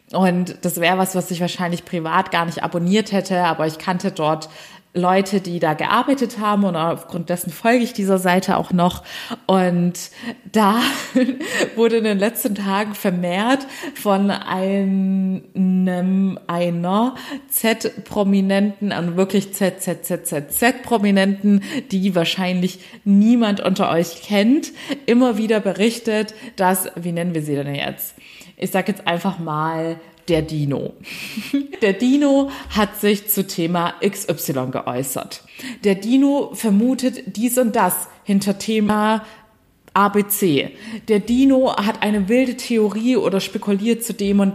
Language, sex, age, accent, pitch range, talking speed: German, female, 20-39, German, 180-230 Hz, 130 wpm